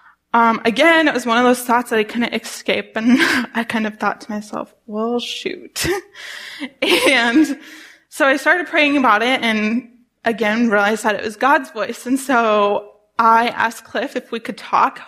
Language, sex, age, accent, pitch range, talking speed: English, female, 10-29, American, 230-285 Hz, 180 wpm